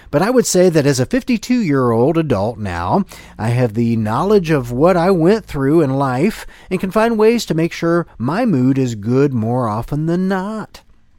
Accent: American